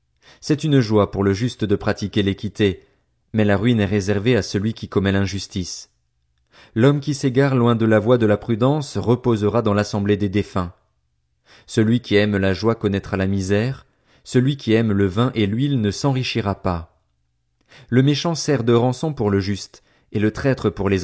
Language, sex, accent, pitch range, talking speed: French, male, French, 100-125 Hz, 185 wpm